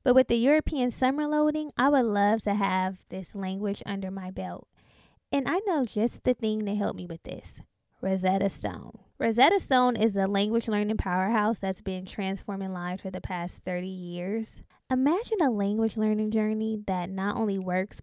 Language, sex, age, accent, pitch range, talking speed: English, female, 20-39, American, 190-230 Hz, 180 wpm